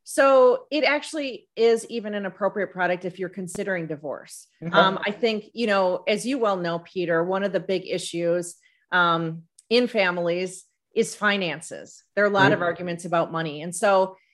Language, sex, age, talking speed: English, female, 40-59, 175 wpm